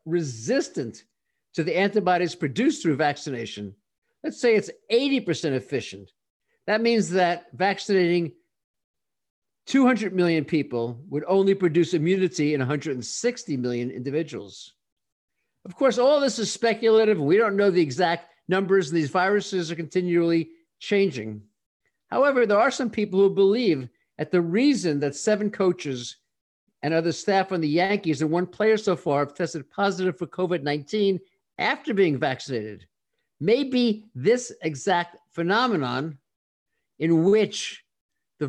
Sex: male